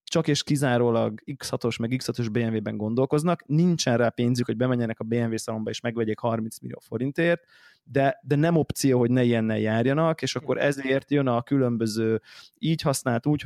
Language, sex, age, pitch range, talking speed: Hungarian, male, 20-39, 115-140 Hz, 170 wpm